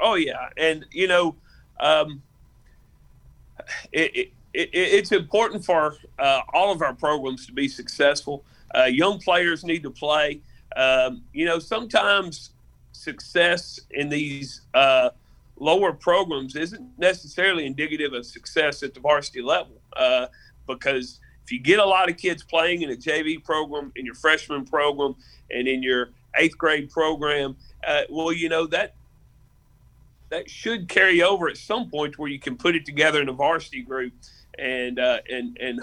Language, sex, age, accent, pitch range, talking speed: English, male, 40-59, American, 135-170 Hz, 155 wpm